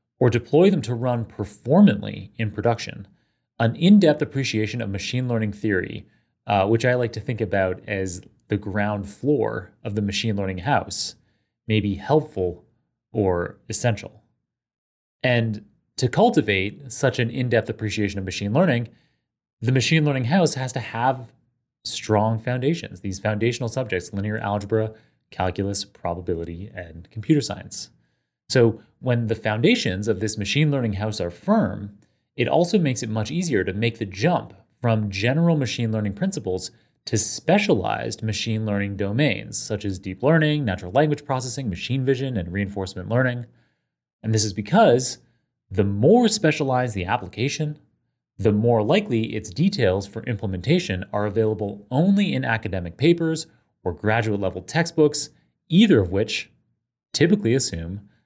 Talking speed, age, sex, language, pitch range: 140 wpm, 30-49, male, English, 105-130 Hz